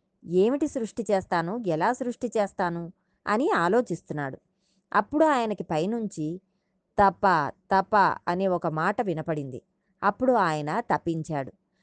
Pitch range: 170-225 Hz